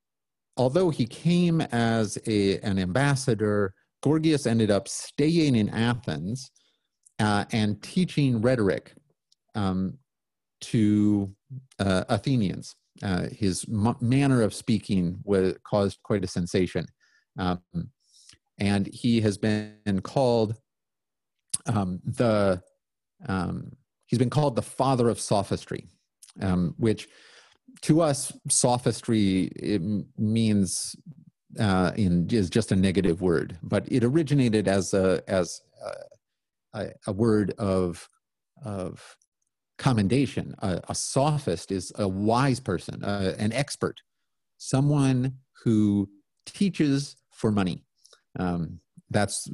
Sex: male